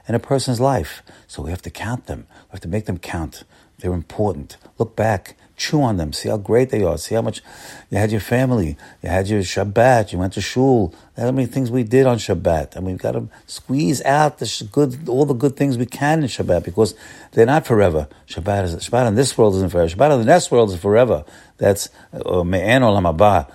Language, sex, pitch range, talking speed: English, male, 90-125 Hz, 220 wpm